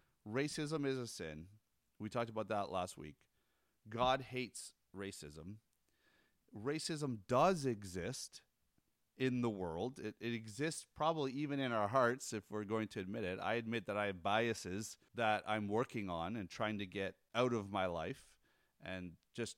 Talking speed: 160 wpm